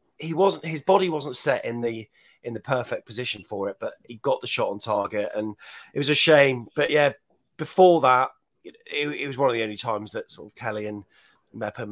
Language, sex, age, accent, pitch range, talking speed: English, male, 30-49, British, 115-165 Hz, 220 wpm